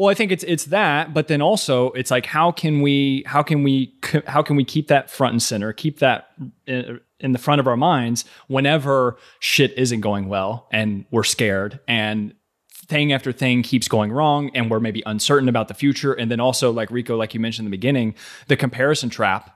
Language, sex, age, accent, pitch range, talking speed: English, male, 20-39, American, 115-140 Hz, 210 wpm